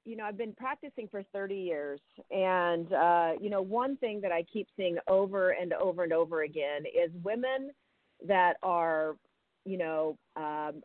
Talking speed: 170 wpm